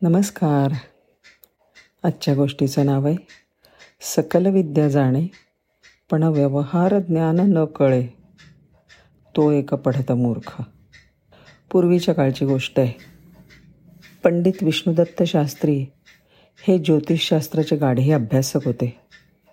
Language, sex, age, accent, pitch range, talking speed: Marathi, female, 50-69, native, 140-175 Hz, 80 wpm